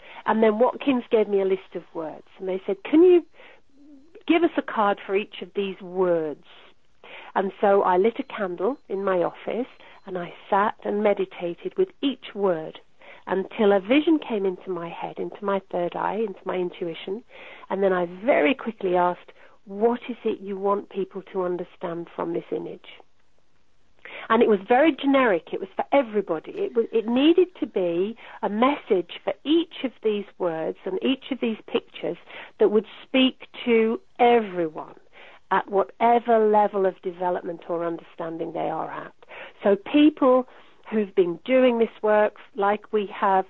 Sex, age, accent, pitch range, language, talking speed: female, 40-59, British, 185-255 Hz, English, 170 wpm